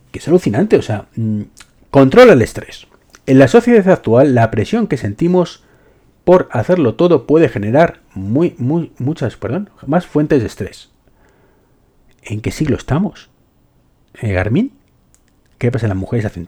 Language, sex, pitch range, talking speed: Spanish, male, 100-155 Hz, 145 wpm